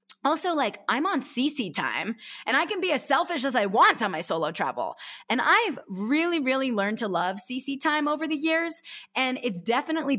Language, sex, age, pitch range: English, female, 20-39, 200-270 Hz